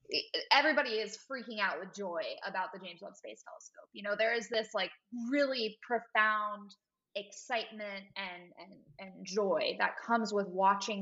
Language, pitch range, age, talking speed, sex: English, 190-235 Hz, 20-39, 160 wpm, female